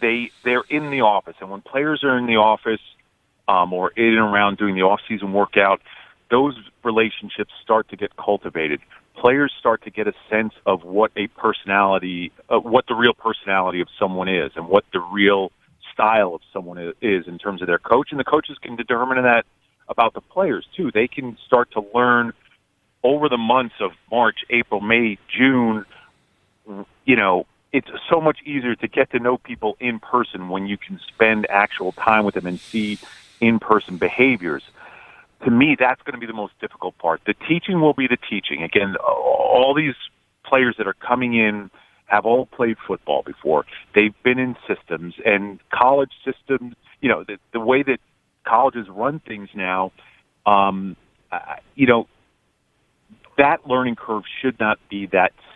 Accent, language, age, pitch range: American, English, 40-59, 100-125 Hz